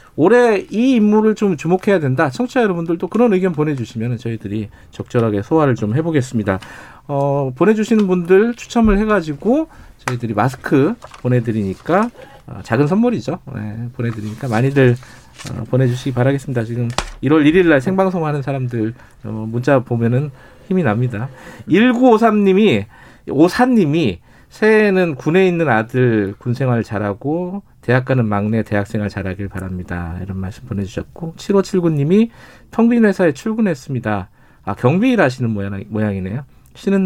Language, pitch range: Korean, 110-180 Hz